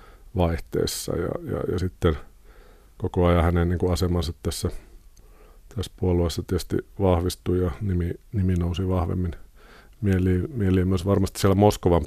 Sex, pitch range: male, 85-95 Hz